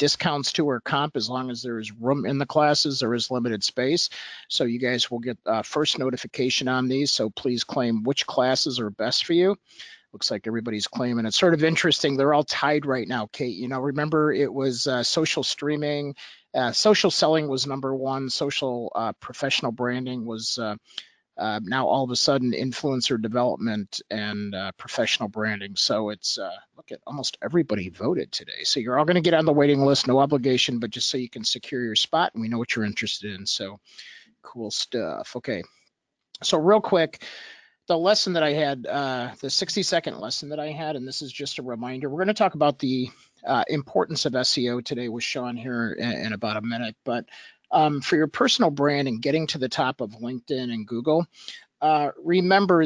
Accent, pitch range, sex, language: American, 120-150 Hz, male, English